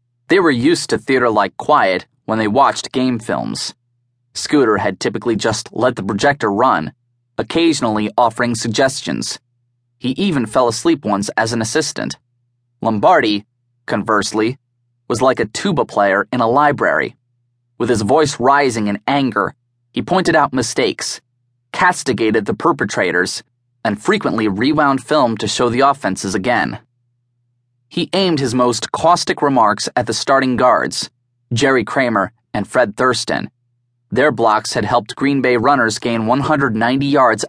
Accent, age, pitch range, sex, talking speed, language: American, 20-39, 120-135 Hz, male, 140 wpm, English